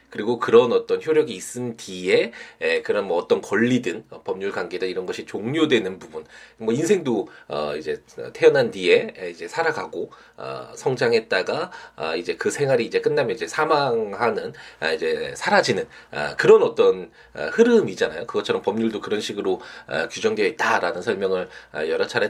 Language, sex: Korean, male